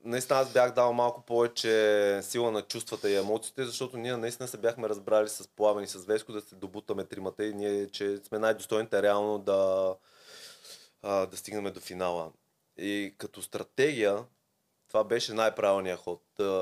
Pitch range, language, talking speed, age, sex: 100-120 Hz, Bulgarian, 160 wpm, 20-39, male